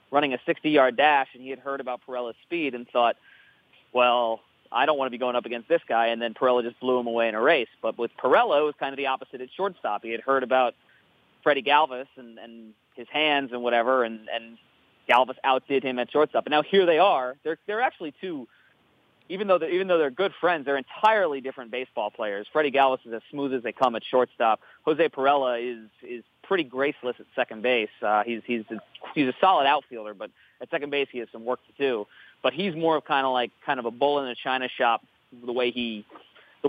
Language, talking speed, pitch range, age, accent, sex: English, 235 wpm, 120-145 Hz, 30-49, American, male